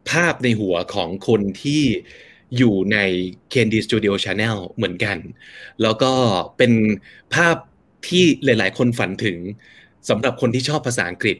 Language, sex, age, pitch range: Thai, male, 20-39, 105-140 Hz